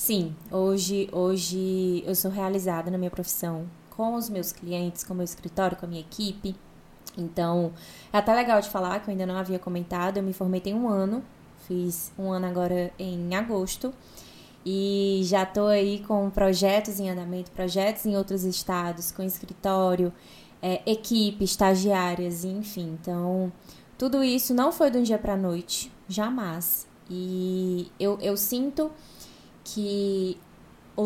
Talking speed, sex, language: 155 wpm, female, Portuguese